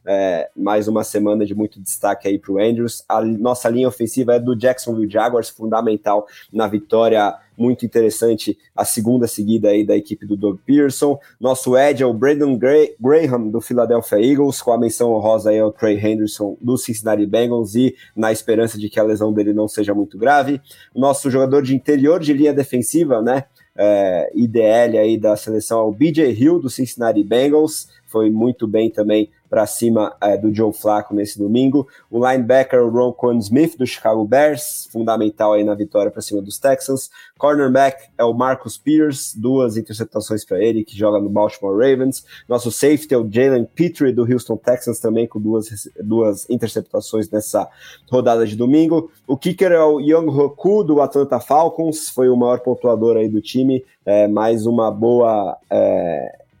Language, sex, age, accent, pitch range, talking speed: English, male, 20-39, Brazilian, 110-130 Hz, 180 wpm